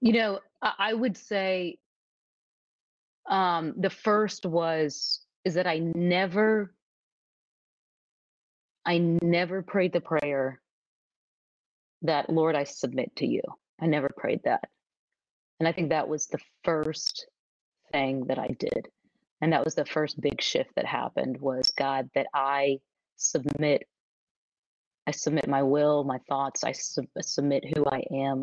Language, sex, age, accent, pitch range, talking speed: English, female, 30-49, American, 140-170 Hz, 135 wpm